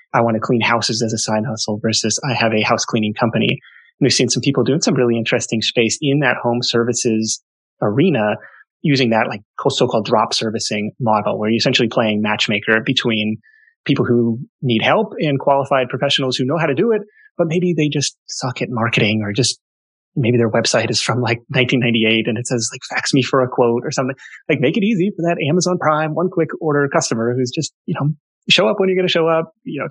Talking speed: 220 wpm